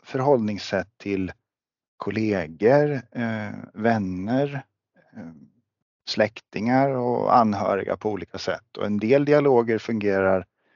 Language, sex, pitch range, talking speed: English, male, 100-125 Hz, 95 wpm